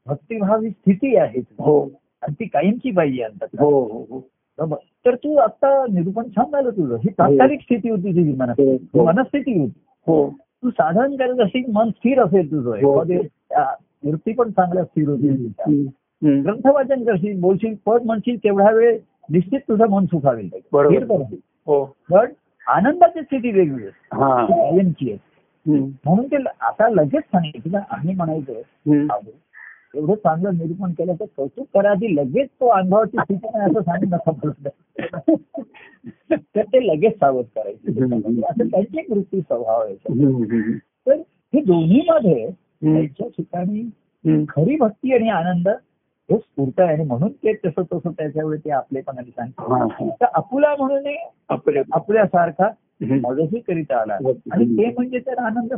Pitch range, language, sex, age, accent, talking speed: 150-230 Hz, Marathi, male, 50-69, native, 115 wpm